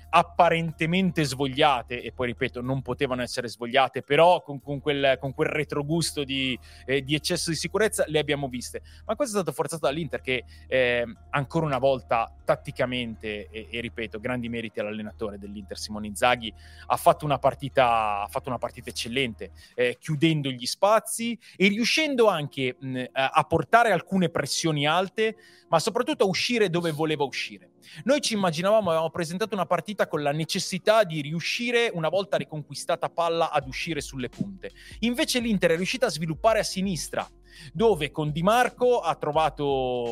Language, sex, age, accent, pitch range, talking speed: Italian, male, 30-49, native, 130-170 Hz, 160 wpm